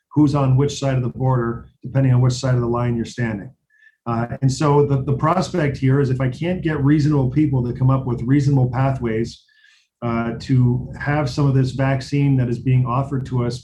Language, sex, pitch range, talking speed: English, male, 125-145 Hz, 215 wpm